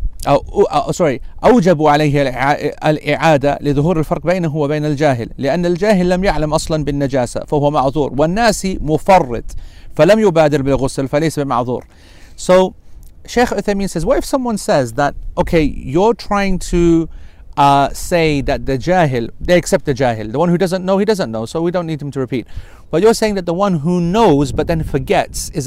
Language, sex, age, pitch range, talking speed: English, male, 40-59, 130-170 Hz, 120 wpm